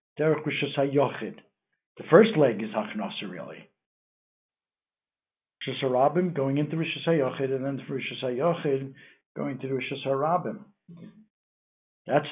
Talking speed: 95 wpm